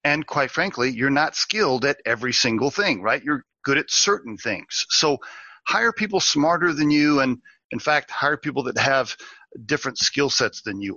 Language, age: English, 40-59